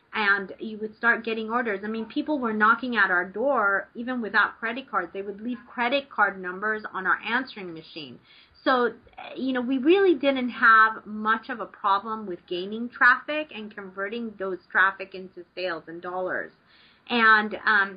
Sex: female